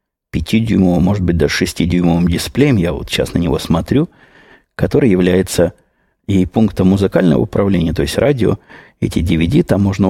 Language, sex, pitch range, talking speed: Russian, male, 90-105 Hz, 150 wpm